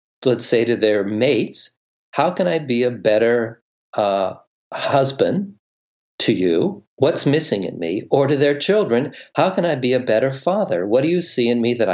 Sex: male